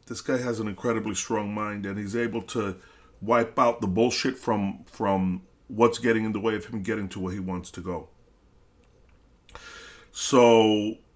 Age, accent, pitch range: 40-59, American, 100-125 Hz